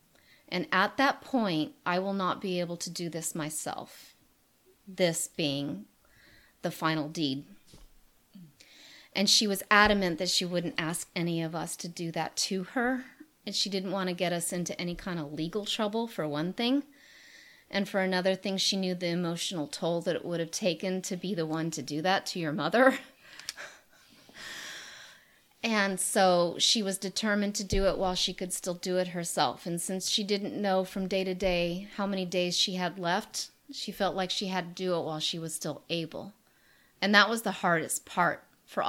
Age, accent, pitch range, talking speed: 30-49, American, 175-210 Hz, 190 wpm